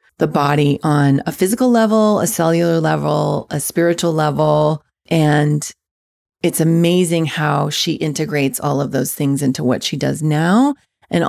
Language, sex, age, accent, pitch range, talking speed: English, female, 30-49, American, 145-165 Hz, 150 wpm